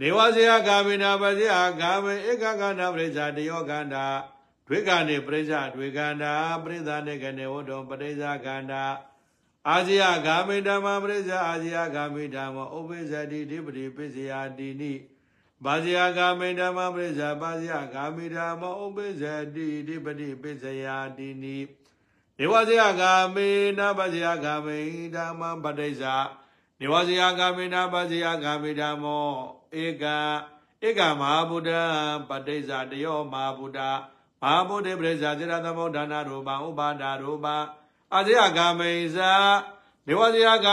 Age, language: 60-79, English